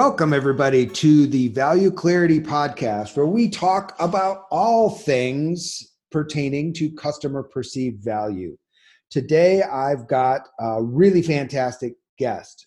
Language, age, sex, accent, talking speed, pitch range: English, 30-49, male, American, 120 wpm, 130-170 Hz